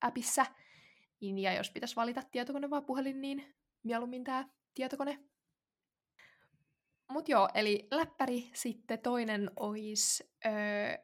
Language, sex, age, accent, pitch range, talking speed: Finnish, female, 20-39, native, 205-255 Hz, 110 wpm